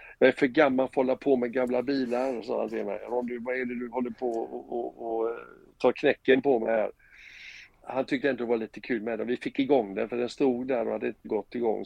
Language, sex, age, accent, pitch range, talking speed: Swedish, male, 60-79, native, 120-145 Hz, 235 wpm